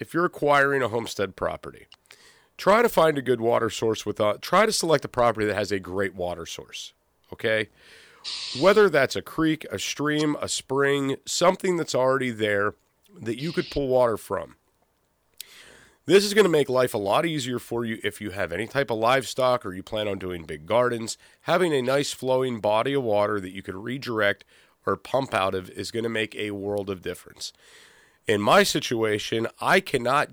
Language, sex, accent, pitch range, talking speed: English, male, American, 110-140 Hz, 190 wpm